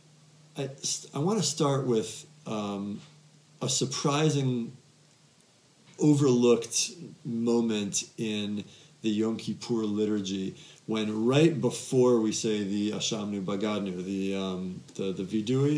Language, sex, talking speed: English, male, 110 wpm